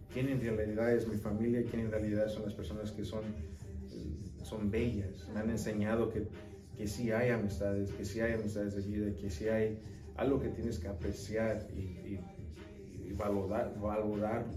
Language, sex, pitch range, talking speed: English, male, 100-115 Hz, 190 wpm